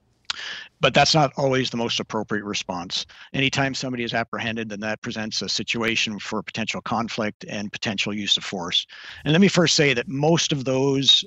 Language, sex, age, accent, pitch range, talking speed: English, male, 50-69, American, 105-130 Hz, 180 wpm